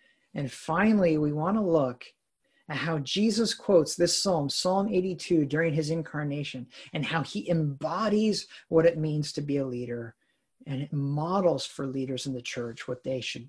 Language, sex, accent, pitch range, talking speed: English, male, American, 140-175 Hz, 175 wpm